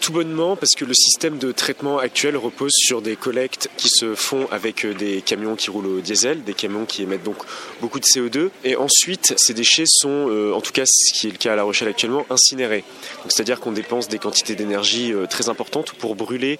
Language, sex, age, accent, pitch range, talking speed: French, male, 30-49, French, 110-135 Hz, 215 wpm